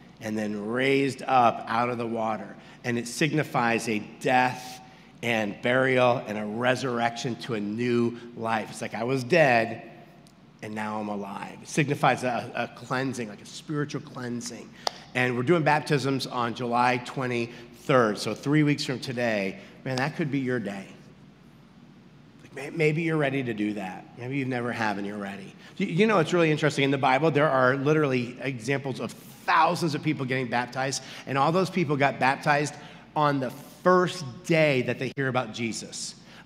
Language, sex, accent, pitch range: English, male, American, 120-160 Hz